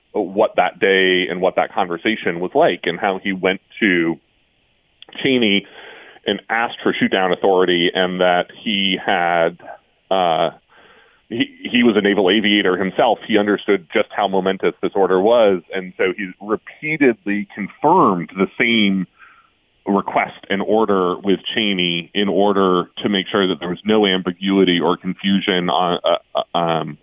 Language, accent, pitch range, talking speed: English, American, 95-115 Hz, 150 wpm